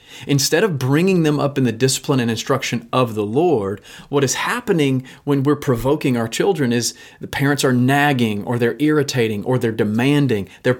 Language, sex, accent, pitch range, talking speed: English, male, American, 125-155 Hz, 185 wpm